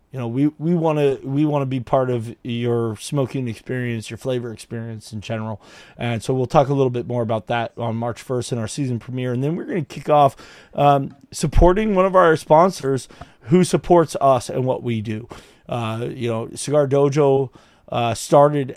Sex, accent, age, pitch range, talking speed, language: male, American, 30-49, 120-140 Hz, 190 wpm, English